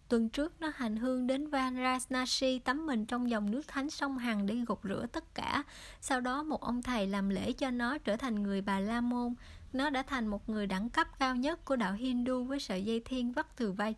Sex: male